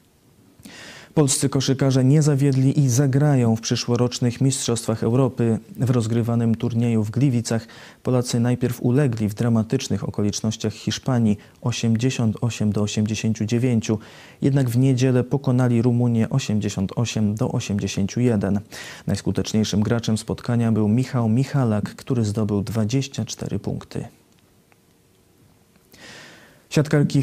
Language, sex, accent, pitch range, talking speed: Polish, male, native, 105-125 Hz, 95 wpm